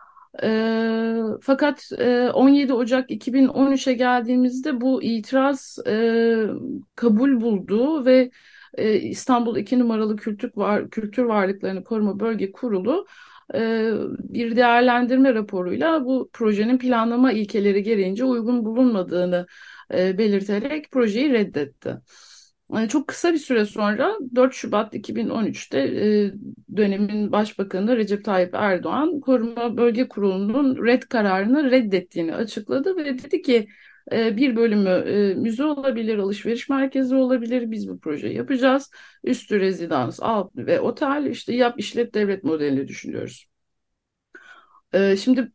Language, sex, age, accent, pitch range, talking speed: Turkish, female, 60-79, native, 210-260 Hz, 115 wpm